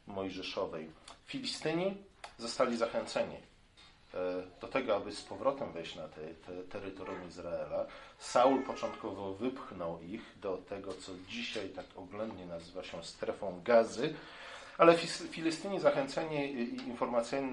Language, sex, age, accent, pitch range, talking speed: Polish, male, 40-59, native, 90-140 Hz, 115 wpm